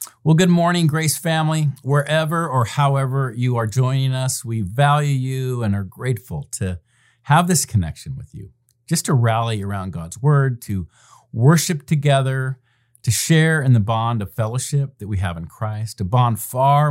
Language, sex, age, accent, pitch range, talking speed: English, male, 40-59, American, 110-145 Hz, 170 wpm